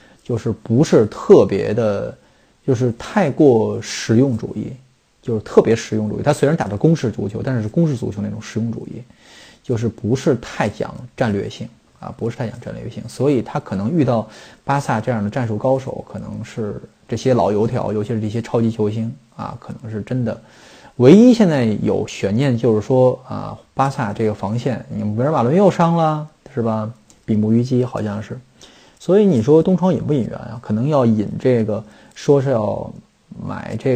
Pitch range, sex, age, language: 110-140 Hz, male, 20-39, Chinese